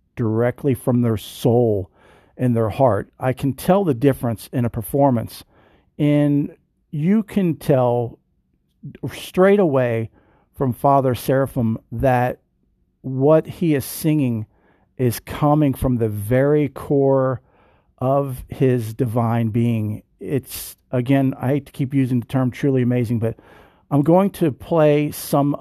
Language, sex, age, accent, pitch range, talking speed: English, male, 50-69, American, 120-145 Hz, 130 wpm